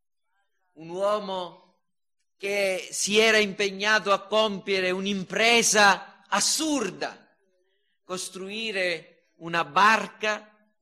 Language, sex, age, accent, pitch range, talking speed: Italian, male, 40-59, native, 190-265 Hz, 70 wpm